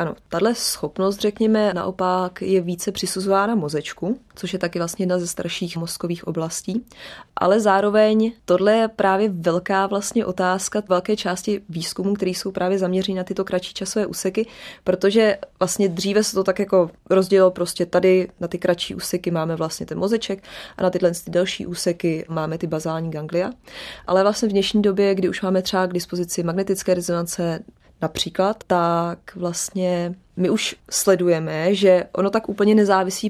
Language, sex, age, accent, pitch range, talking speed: Czech, female, 20-39, native, 175-200 Hz, 160 wpm